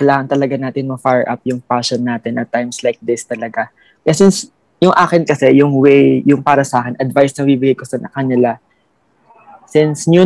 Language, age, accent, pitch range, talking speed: Filipino, 20-39, native, 130-155 Hz, 195 wpm